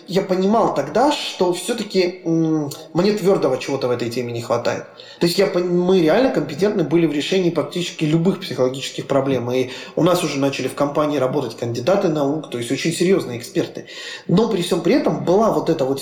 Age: 20-39